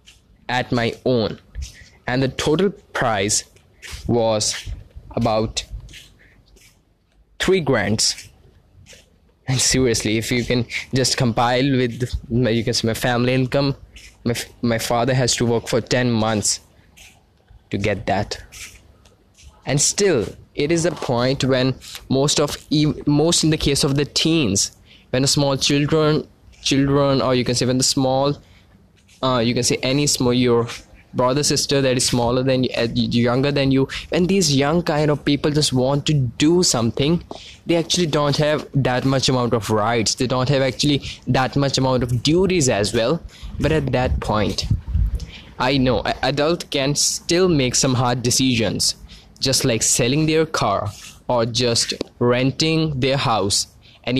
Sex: male